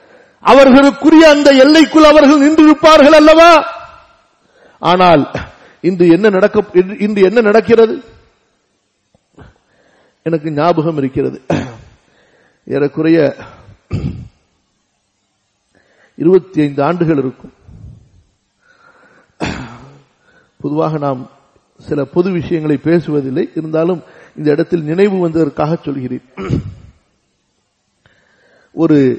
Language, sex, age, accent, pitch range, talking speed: Tamil, male, 50-69, native, 150-230 Hz, 65 wpm